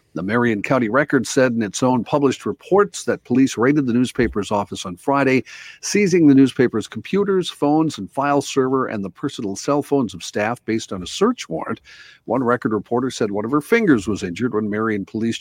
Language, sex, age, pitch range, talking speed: English, male, 50-69, 105-130 Hz, 200 wpm